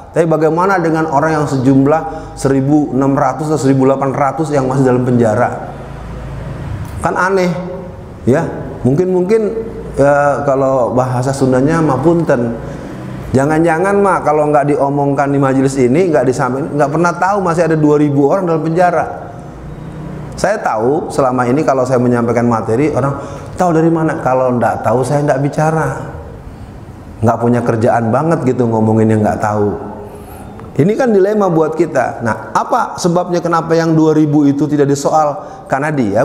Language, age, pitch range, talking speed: Malay, 30-49, 125-160 Hz, 135 wpm